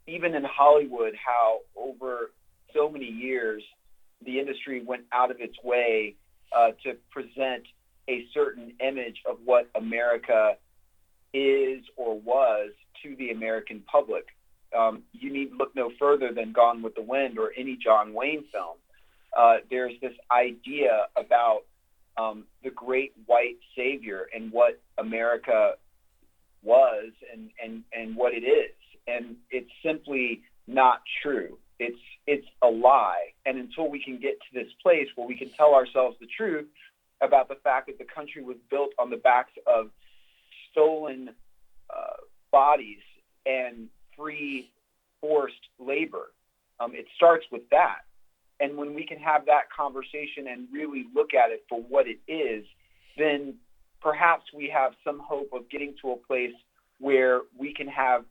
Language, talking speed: English, 150 wpm